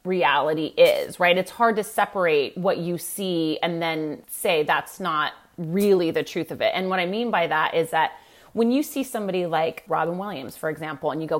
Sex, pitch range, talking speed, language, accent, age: female, 165-205 Hz, 210 wpm, English, American, 30-49